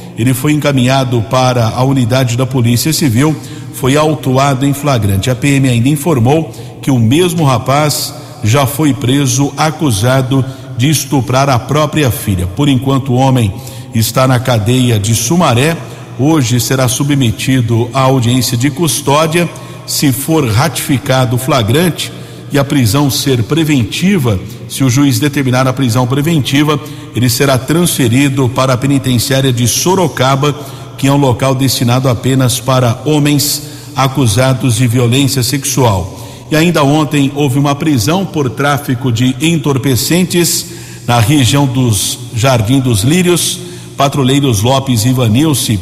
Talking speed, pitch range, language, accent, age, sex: 135 wpm, 125-145 Hz, Portuguese, Brazilian, 50-69, male